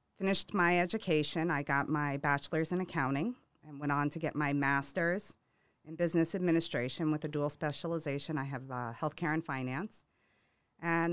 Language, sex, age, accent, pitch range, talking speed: English, female, 40-59, American, 140-170 Hz, 160 wpm